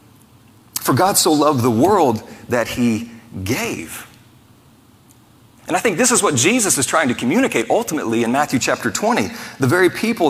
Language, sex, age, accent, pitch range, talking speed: English, male, 40-59, American, 115-130 Hz, 165 wpm